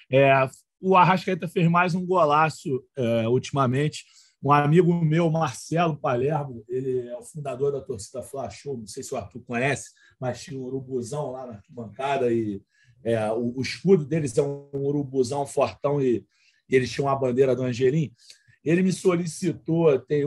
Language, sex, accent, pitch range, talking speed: Portuguese, male, Brazilian, 135-175 Hz, 165 wpm